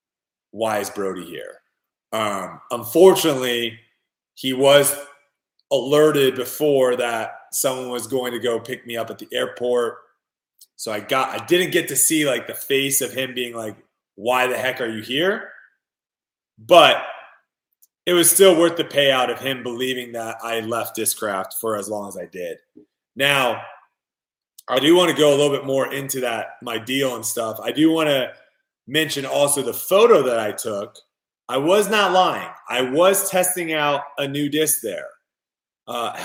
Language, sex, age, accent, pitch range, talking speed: English, male, 30-49, American, 120-155 Hz, 170 wpm